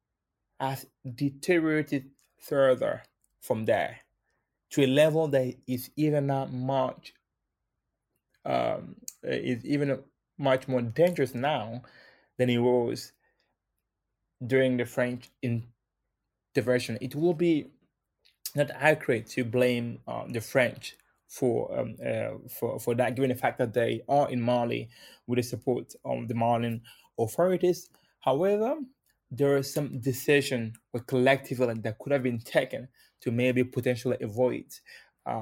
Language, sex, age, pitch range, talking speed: English, male, 20-39, 120-135 Hz, 125 wpm